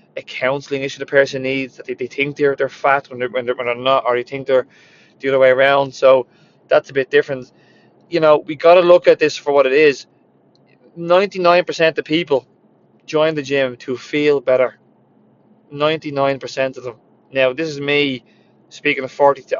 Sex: male